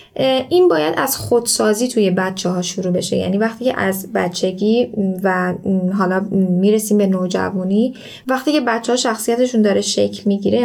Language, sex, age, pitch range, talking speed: Persian, female, 10-29, 195-235 Hz, 150 wpm